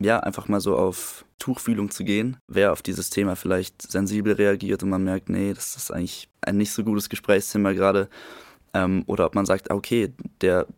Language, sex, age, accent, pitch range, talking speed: German, male, 20-39, German, 95-105 Hz, 190 wpm